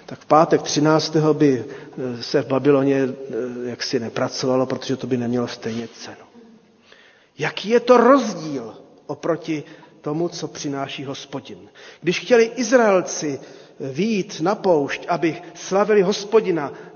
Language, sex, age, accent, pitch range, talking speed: Czech, male, 40-59, native, 140-180 Hz, 120 wpm